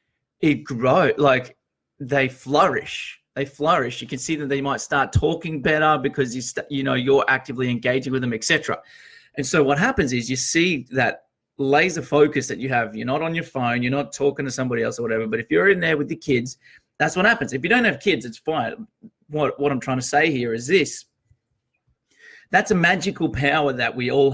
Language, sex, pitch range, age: English, male, 120-150 Hz, 30-49